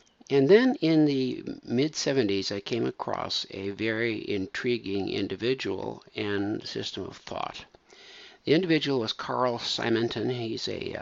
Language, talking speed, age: English, 115 wpm, 60-79